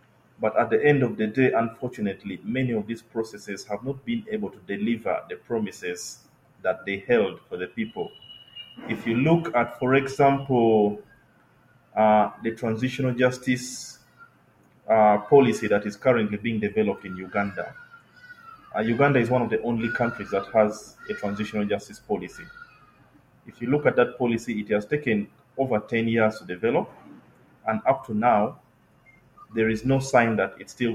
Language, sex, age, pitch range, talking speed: English, male, 30-49, 110-130 Hz, 165 wpm